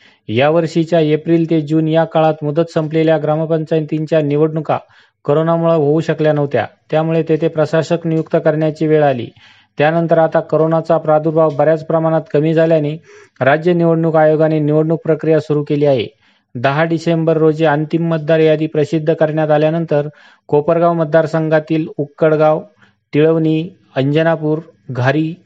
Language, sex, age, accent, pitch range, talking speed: Marathi, male, 40-59, native, 150-160 Hz, 75 wpm